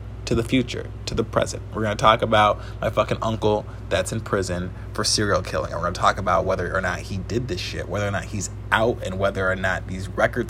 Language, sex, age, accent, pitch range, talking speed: English, male, 20-39, American, 95-115 Hz, 245 wpm